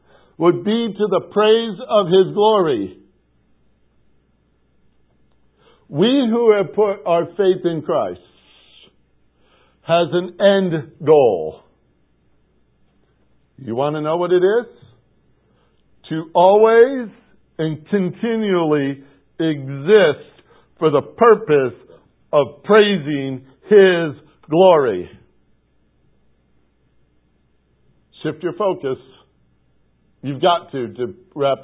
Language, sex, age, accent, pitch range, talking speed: English, male, 60-79, American, 130-200 Hz, 90 wpm